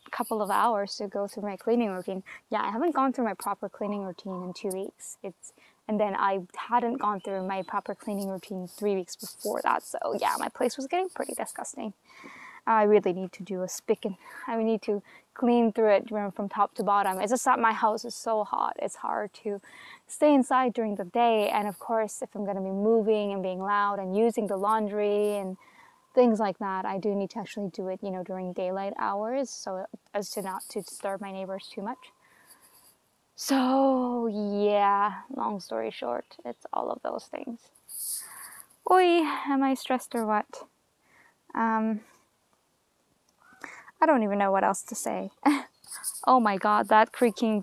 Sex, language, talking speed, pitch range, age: female, English, 190 wpm, 195-235 Hz, 10-29